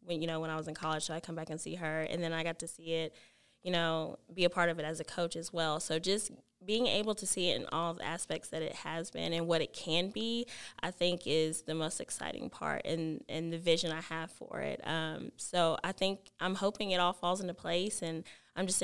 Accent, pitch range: American, 165-180 Hz